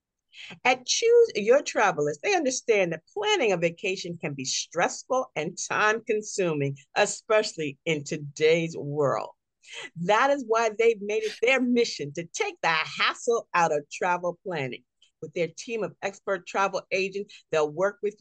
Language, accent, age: English, American, 50-69